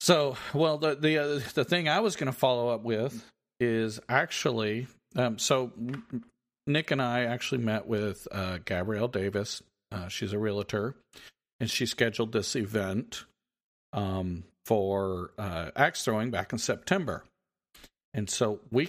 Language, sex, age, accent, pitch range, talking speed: English, male, 50-69, American, 100-125 Hz, 150 wpm